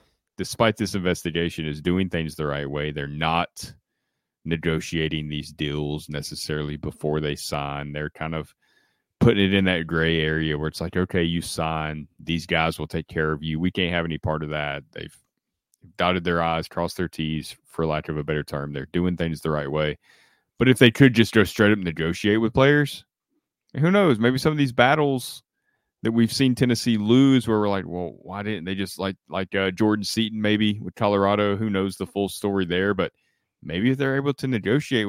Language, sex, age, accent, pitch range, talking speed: English, male, 30-49, American, 80-110 Hz, 200 wpm